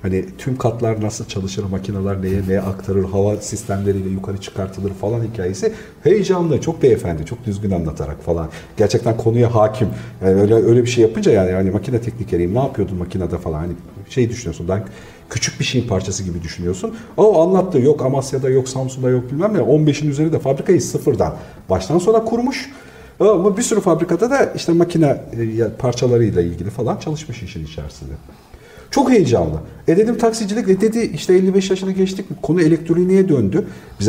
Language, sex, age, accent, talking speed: Turkish, male, 50-69, native, 165 wpm